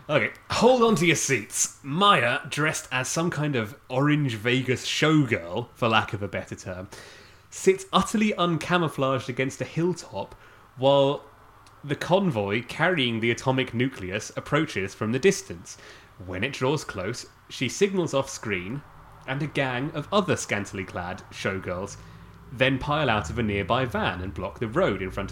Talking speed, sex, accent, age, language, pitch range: 155 wpm, male, British, 30-49, English, 110-150 Hz